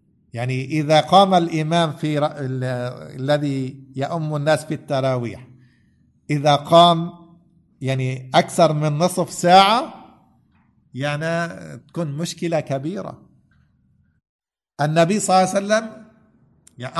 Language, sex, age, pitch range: English, male, 50-69, 130-170 Hz